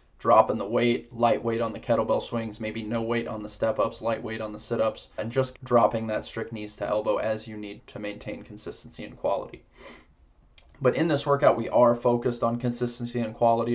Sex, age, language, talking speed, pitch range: male, 20-39, English, 195 wpm, 105-120 Hz